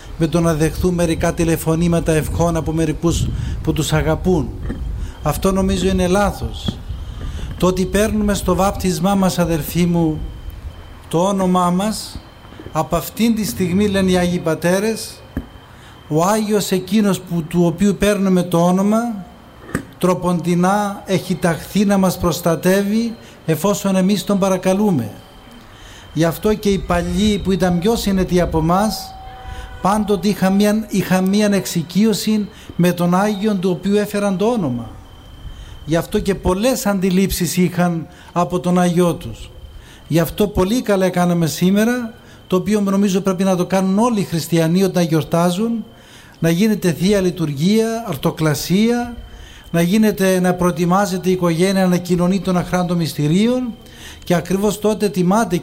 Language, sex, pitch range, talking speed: Greek, male, 165-200 Hz, 135 wpm